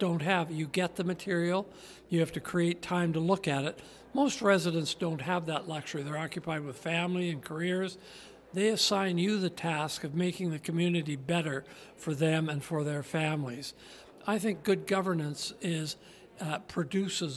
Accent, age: American, 60-79